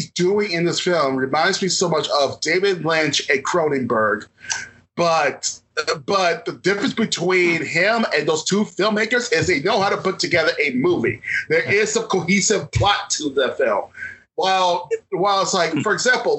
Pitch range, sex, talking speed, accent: 165-220 Hz, male, 170 wpm, American